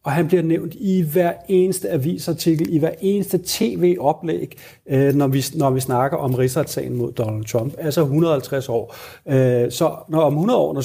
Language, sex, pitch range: Danish, male, 120-155 Hz